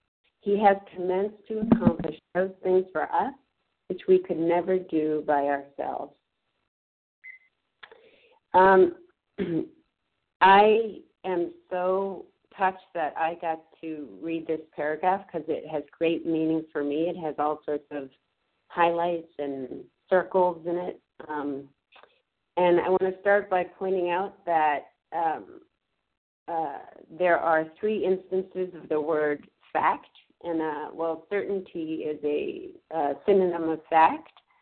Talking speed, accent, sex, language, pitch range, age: 130 wpm, American, female, English, 155-190 Hz, 50-69